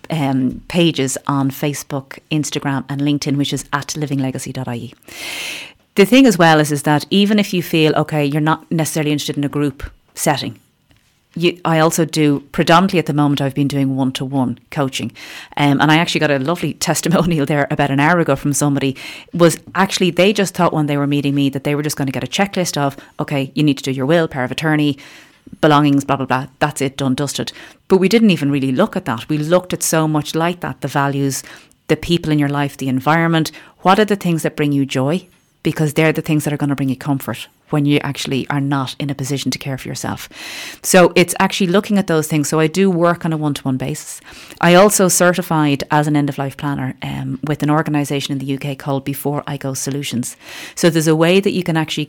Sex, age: female, 30-49